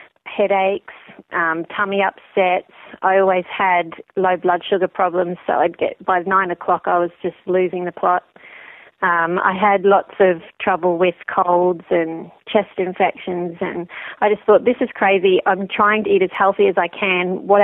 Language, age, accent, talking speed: English, 30-49, Australian, 175 wpm